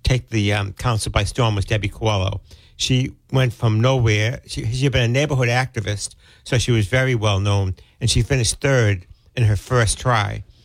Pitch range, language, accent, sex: 105-130 Hz, English, American, male